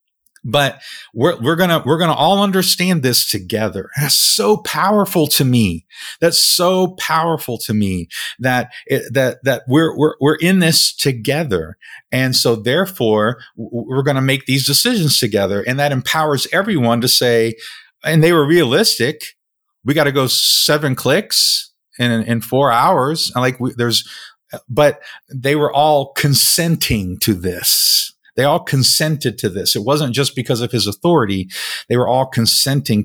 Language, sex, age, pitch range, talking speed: English, male, 40-59, 110-145 Hz, 150 wpm